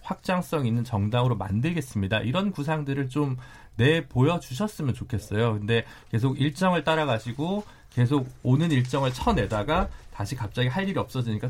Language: Korean